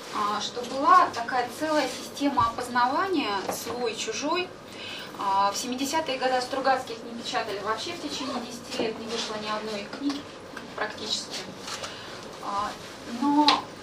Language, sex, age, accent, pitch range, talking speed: Russian, female, 20-39, native, 230-290 Hz, 115 wpm